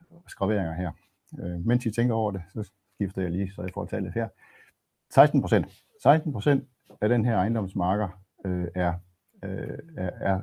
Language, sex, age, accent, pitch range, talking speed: Danish, male, 60-79, native, 90-110 Hz, 145 wpm